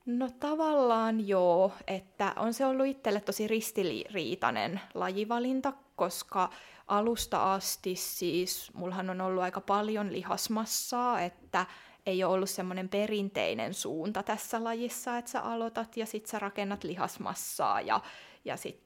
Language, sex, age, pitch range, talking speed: Finnish, female, 20-39, 190-235 Hz, 130 wpm